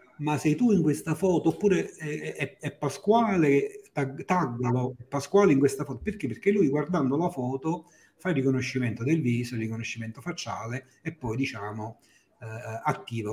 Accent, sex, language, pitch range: native, male, Italian, 120-160 Hz